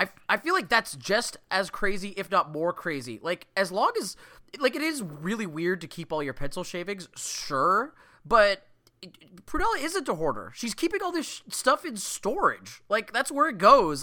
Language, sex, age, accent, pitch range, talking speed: English, male, 20-39, American, 155-230 Hz, 190 wpm